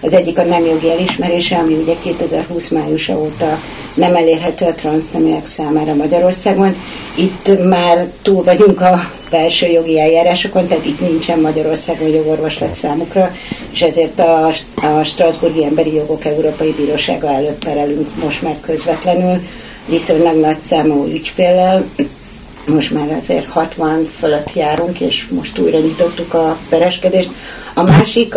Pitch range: 155-175 Hz